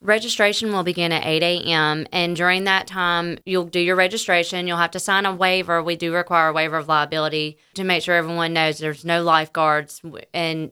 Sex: female